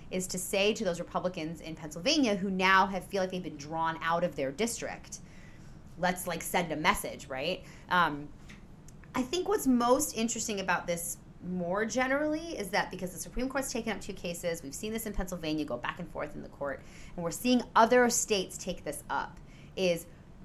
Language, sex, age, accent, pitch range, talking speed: English, female, 30-49, American, 165-225 Hz, 195 wpm